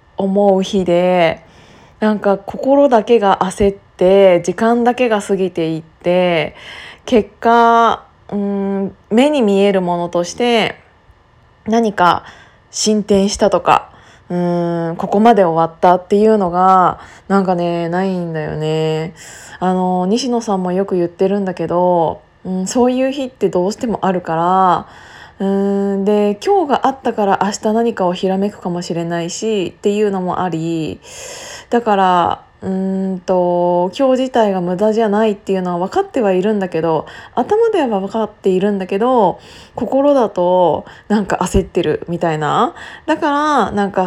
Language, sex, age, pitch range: Japanese, female, 20-39, 175-215 Hz